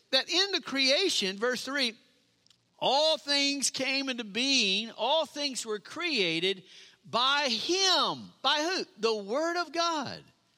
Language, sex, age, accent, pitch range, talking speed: English, male, 50-69, American, 205-300 Hz, 130 wpm